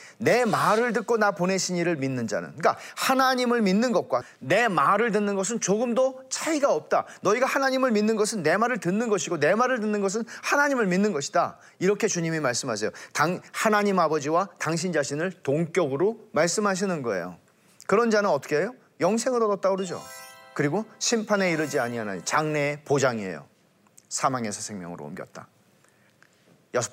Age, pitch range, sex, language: 40-59, 145-225 Hz, male, Korean